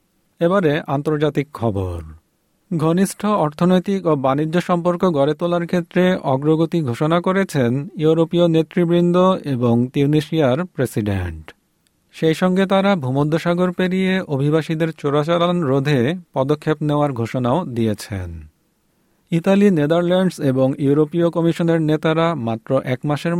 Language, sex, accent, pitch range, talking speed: Bengali, male, native, 130-175 Hz, 105 wpm